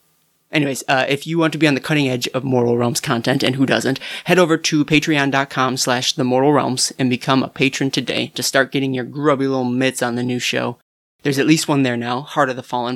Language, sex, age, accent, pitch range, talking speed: English, male, 20-39, American, 125-150 Hz, 230 wpm